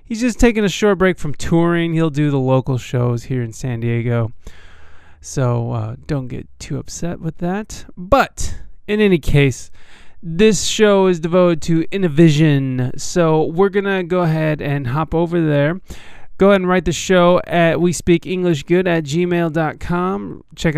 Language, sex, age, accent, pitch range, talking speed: English, male, 20-39, American, 140-175 Hz, 160 wpm